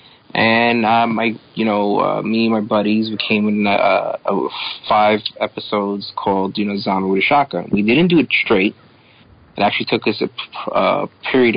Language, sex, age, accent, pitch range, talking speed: English, male, 30-49, American, 100-115 Hz, 190 wpm